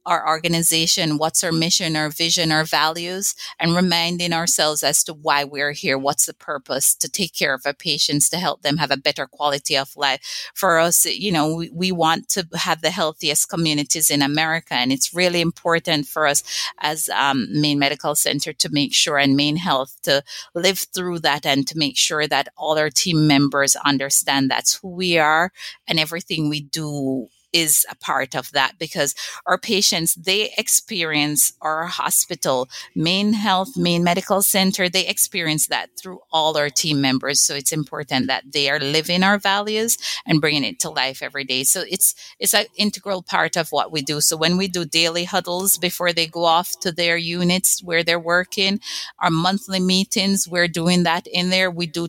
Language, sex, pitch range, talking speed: English, female, 150-185 Hz, 190 wpm